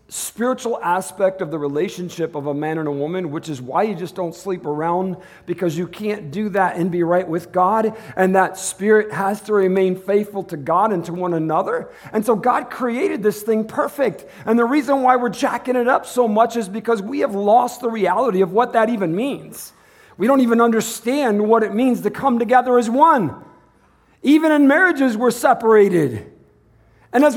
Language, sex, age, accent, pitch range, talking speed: English, male, 50-69, American, 185-255 Hz, 195 wpm